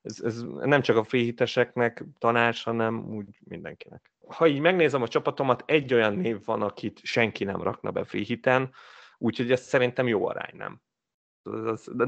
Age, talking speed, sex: 30-49, 160 wpm, male